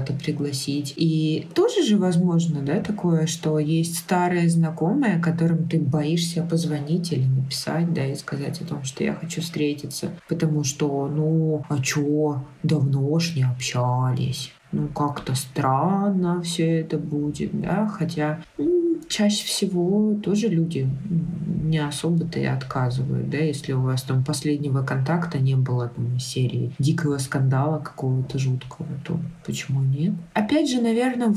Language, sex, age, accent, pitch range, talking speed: Russian, female, 20-39, native, 145-180 Hz, 140 wpm